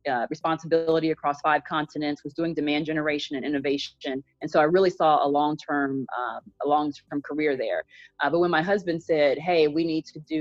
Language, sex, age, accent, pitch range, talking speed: English, female, 30-49, American, 145-175 Hz, 190 wpm